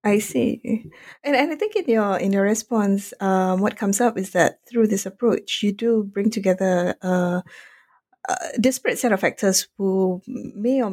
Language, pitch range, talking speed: English, 180-215 Hz, 180 wpm